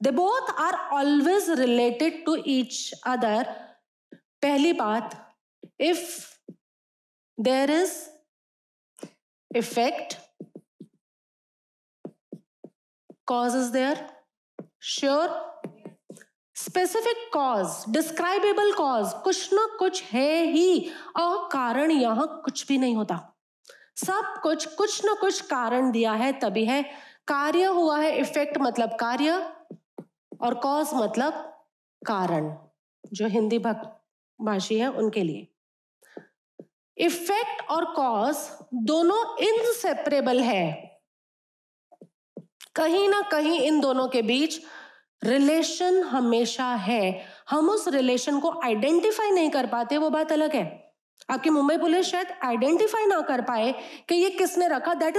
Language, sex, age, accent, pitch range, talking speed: Hindi, female, 30-49, native, 250-345 Hz, 110 wpm